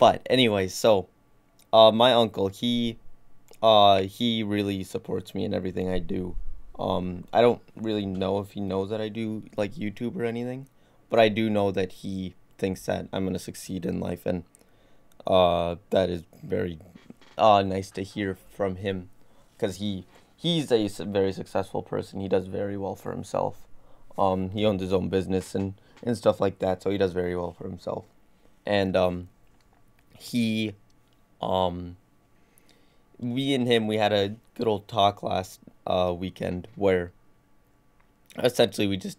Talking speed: 160 wpm